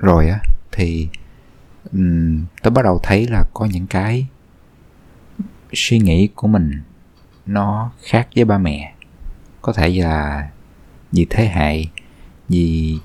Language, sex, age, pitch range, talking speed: Vietnamese, male, 20-39, 80-110 Hz, 125 wpm